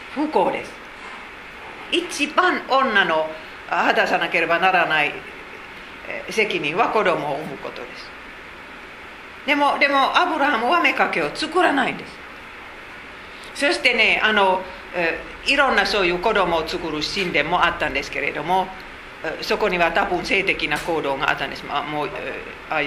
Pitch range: 165-270 Hz